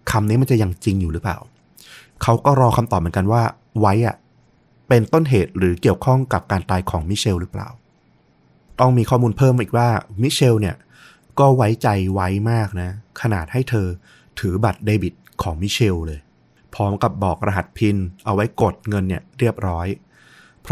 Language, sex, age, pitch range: Thai, male, 30-49, 95-120 Hz